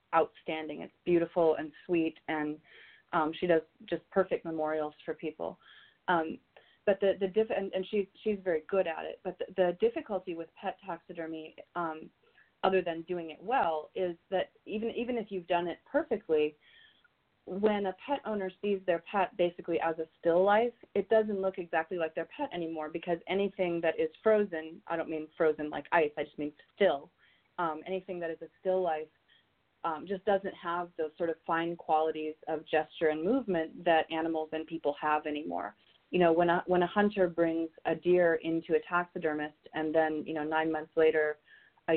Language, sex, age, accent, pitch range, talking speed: English, female, 30-49, American, 160-195 Hz, 185 wpm